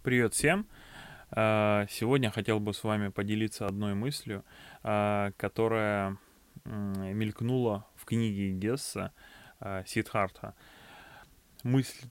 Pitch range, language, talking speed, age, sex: 100-115 Hz, Russian, 85 wpm, 20-39, male